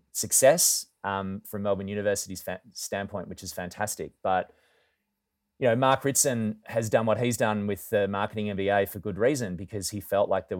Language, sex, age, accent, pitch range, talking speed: English, male, 30-49, Australian, 95-110 Hz, 180 wpm